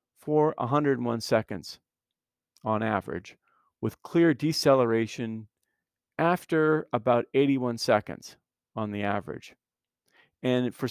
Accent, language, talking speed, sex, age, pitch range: American, English, 95 wpm, male, 50-69, 110-135 Hz